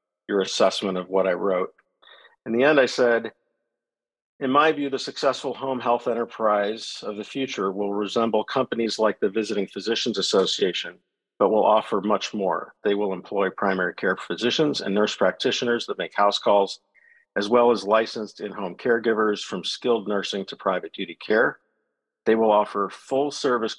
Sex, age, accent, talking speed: male, 50-69, American, 165 wpm